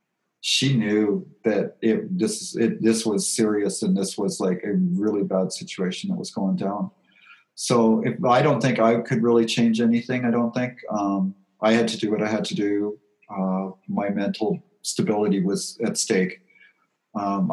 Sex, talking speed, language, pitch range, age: male, 180 wpm, English, 100-135 Hz, 40-59